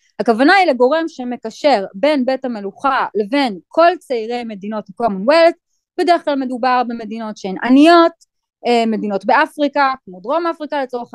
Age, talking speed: 20-39, 130 wpm